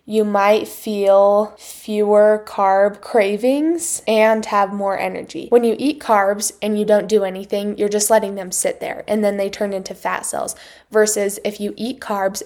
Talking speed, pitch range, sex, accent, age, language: 180 wpm, 205-225 Hz, female, American, 10-29, English